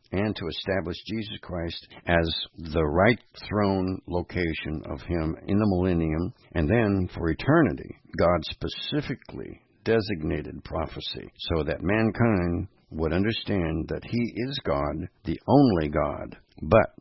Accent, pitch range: American, 80-105 Hz